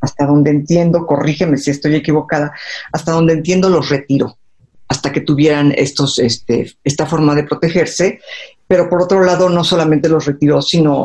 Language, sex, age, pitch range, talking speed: Spanish, female, 50-69, 145-180 Hz, 165 wpm